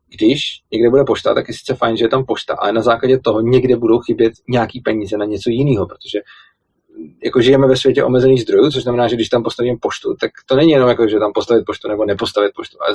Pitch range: 115-135 Hz